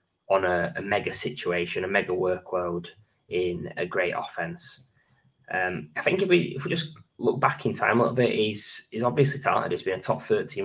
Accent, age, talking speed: British, 10-29, 205 wpm